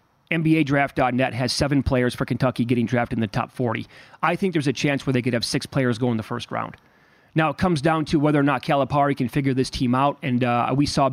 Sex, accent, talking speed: male, American, 250 wpm